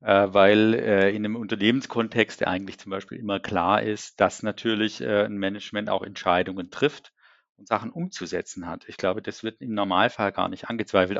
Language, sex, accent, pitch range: German, male, German, 105-140 Hz